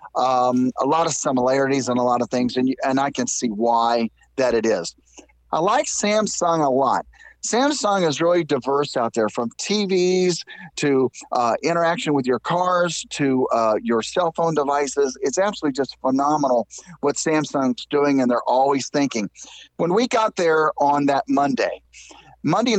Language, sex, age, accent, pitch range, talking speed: English, male, 40-59, American, 130-175 Hz, 165 wpm